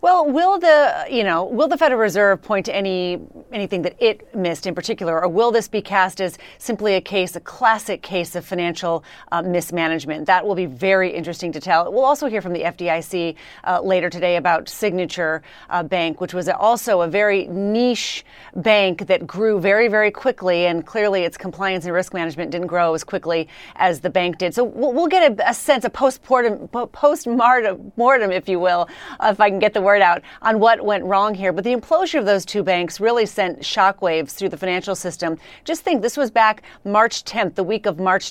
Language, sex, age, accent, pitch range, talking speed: English, female, 30-49, American, 180-230 Hz, 205 wpm